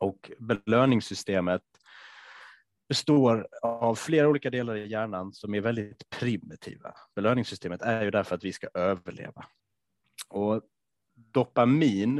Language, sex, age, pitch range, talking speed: Swedish, male, 30-49, 95-115 Hz, 115 wpm